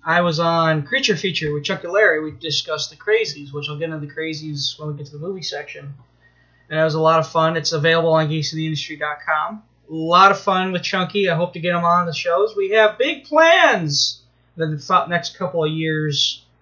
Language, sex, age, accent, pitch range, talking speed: English, male, 20-39, American, 150-195 Hz, 220 wpm